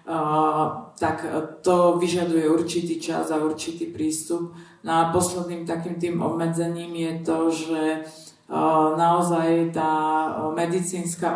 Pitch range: 155-170 Hz